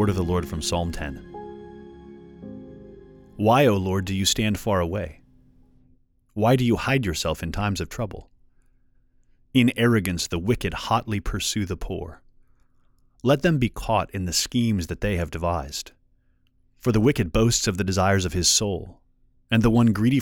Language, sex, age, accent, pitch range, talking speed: English, male, 30-49, American, 85-115 Hz, 170 wpm